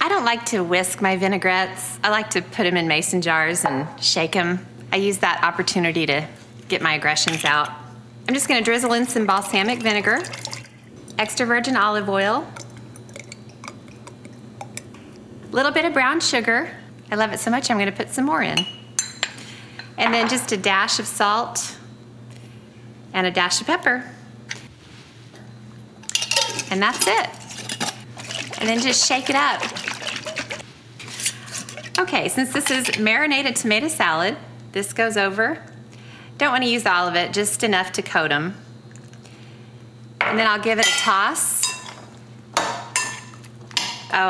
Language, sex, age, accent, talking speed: English, female, 30-49, American, 145 wpm